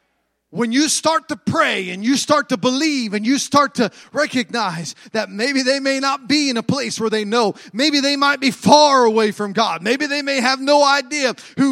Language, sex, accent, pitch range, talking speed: English, male, American, 240-295 Hz, 215 wpm